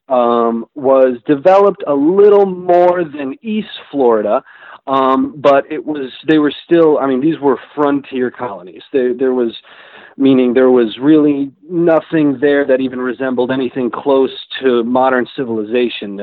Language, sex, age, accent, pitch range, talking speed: English, male, 40-59, American, 125-150 Hz, 145 wpm